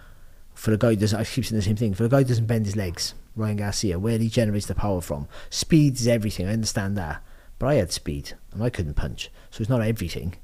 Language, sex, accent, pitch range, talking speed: English, male, British, 105-145 Hz, 240 wpm